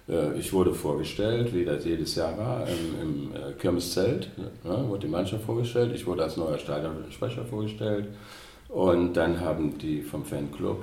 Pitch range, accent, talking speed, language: 90-110 Hz, German, 145 wpm, German